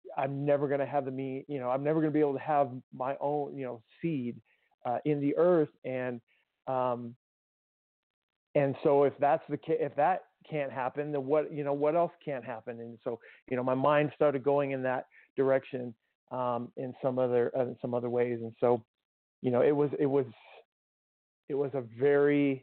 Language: English